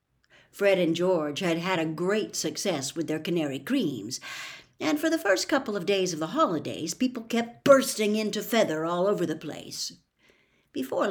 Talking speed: 175 wpm